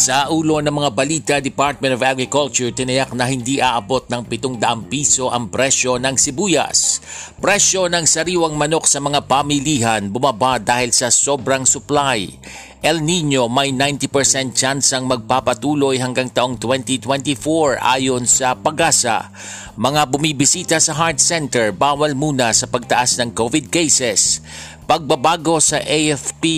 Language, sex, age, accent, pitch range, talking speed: Filipino, male, 50-69, native, 120-145 Hz, 135 wpm